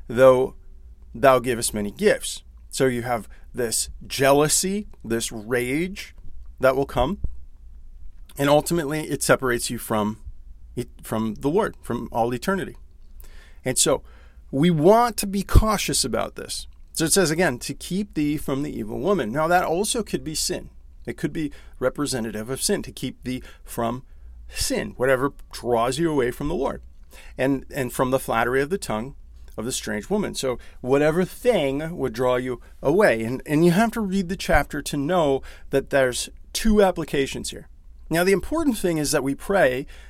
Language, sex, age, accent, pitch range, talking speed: English, male, 40-59, American, 105-160 Hz, 170 wpm